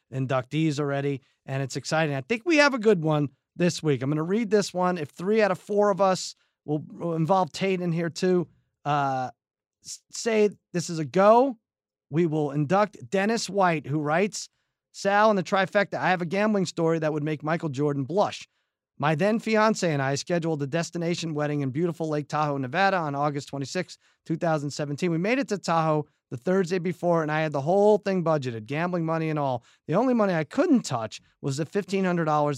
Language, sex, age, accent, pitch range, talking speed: English, male, 30-49, American, 145-185 Hz, 195 wpm